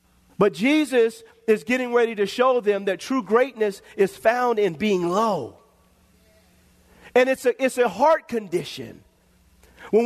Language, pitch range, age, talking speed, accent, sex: English, 205-255 Hz, 40-59, 135 wpm, American, male